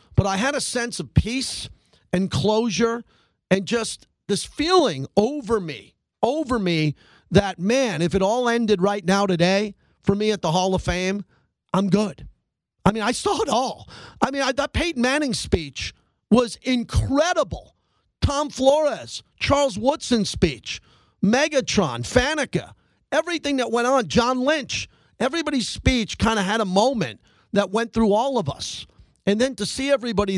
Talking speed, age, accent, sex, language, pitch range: 160 wpm, 40-59, American, male, English, 175-230 Hz